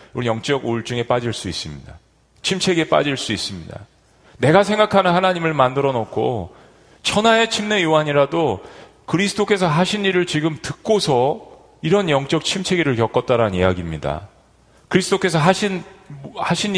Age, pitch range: 40-59, 115-180 Hz